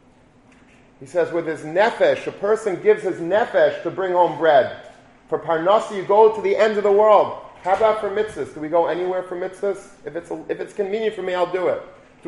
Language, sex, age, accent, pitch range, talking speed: English, male, 40-59, American, 150-190 Hz, 225 wpm